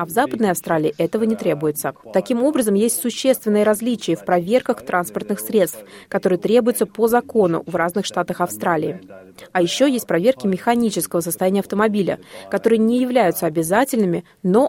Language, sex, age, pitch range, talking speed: Russian, female, 30-49, 175-230 Hz, 145 wpm